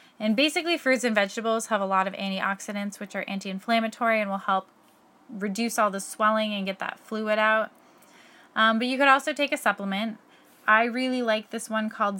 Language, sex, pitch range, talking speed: English, female, 195-240 Hz, 190 wpm